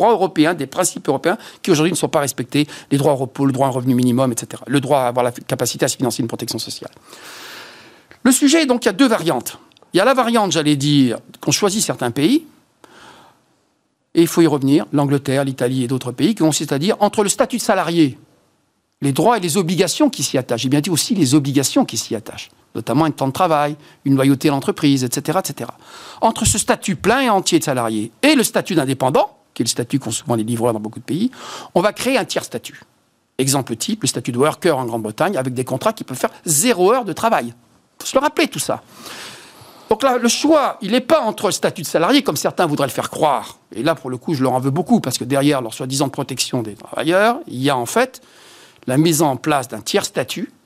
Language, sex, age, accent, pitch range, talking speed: French, male, 50-69, French, 130-215 Hz, 240 wpm